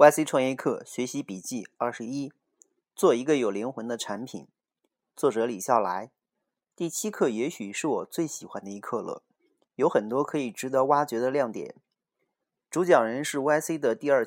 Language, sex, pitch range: Chinese, male, 125-160 Hz